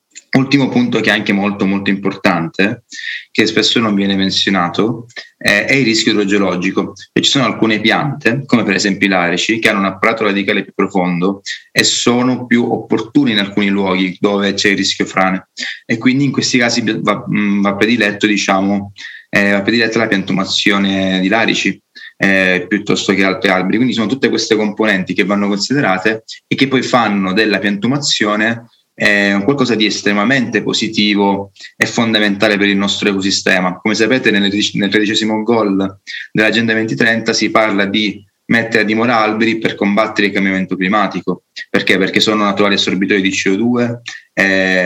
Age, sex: 20-39, male